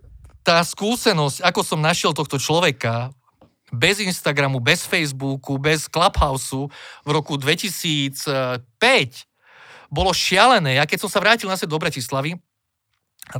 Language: Slovak